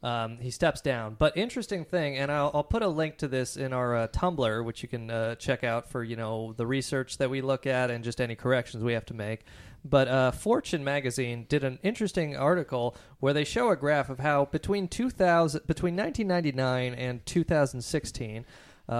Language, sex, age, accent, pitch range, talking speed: English, male, 30-49, American, 125-160 Hz, 200 wpm